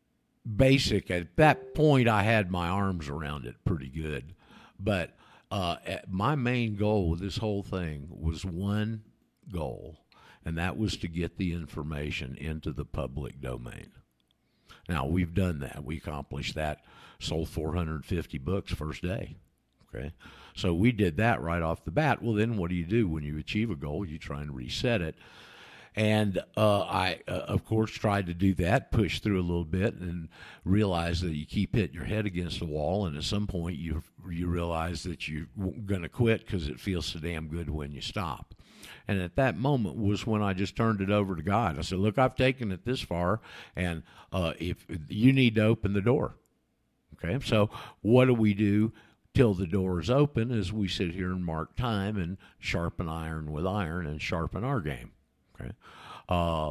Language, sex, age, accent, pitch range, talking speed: English, male, 50-69, American, 80-110 Hz, 185 wpm